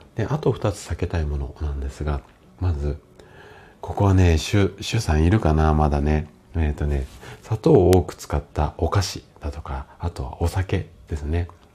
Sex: male